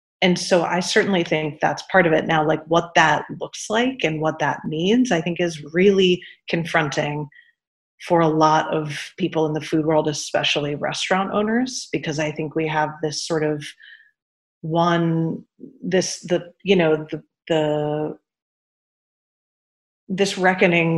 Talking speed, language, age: 150 wpm, English, 30-49